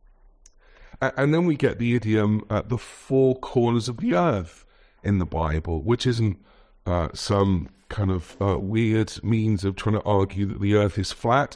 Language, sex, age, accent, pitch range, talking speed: English, male, 50-69, British, 100-135 Hz, 175 wpm